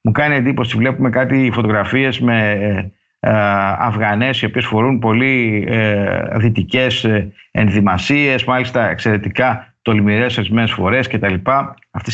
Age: 50-69